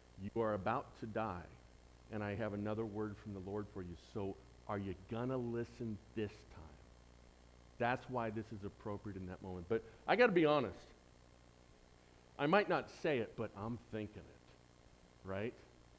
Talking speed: 175 wpm